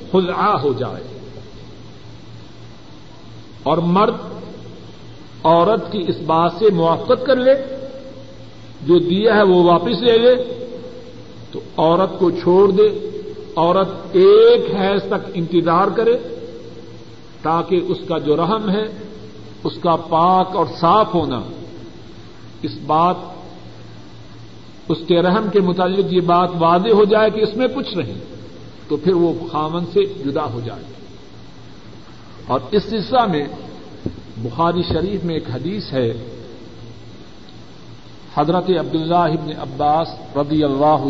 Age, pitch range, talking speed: 50-69, 140-190 Hz, 125 wpm